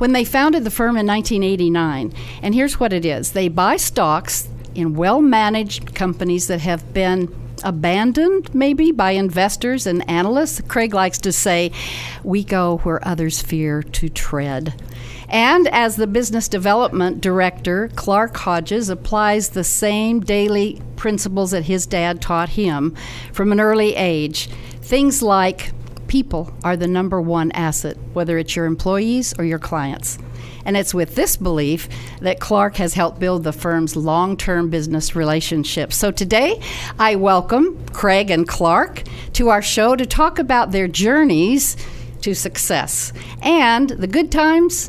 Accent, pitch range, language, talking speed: American, 165-215 Hz, English, 150 wpm